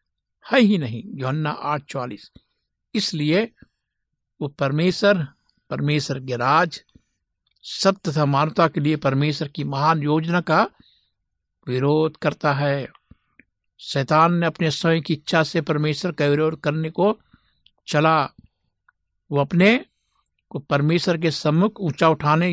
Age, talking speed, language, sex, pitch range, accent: 60-79, 120 wpm, Hindi, male, 145-175 Hz, native